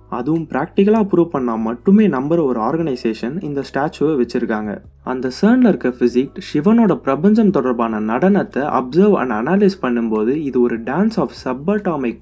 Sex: male